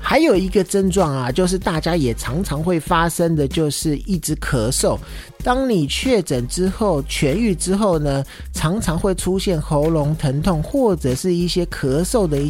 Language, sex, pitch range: Chinese, male, 140-195 Hz